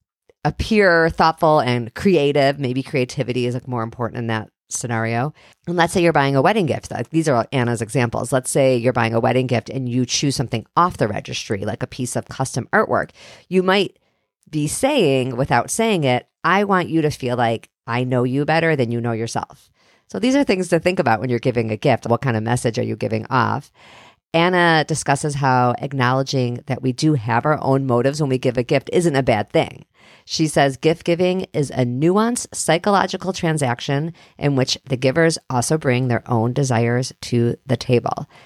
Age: 40-59